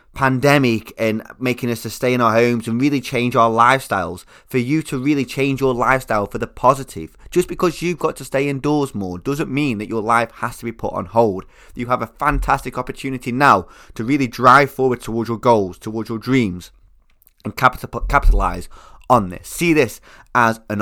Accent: British